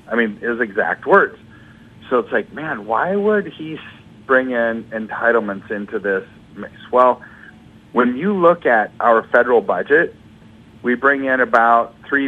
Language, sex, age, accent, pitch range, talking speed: English, male, 50-69, American, 110-145 Hz, 145 wpm